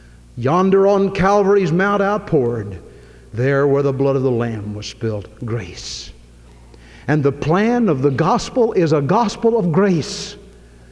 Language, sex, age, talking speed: English, male, 60-79, 145 wpm